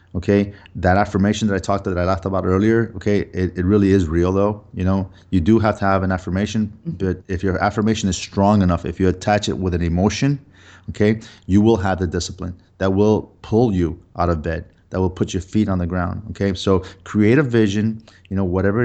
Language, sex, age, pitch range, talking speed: English, male, 30-49, 90-105 Hz, 225 wpm